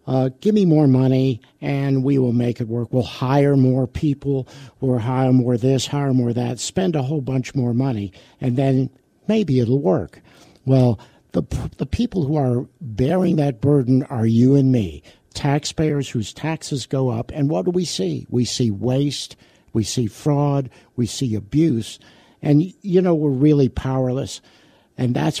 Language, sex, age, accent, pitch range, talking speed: English, male, 60-79, American, 120-145 Hz, 175 wpm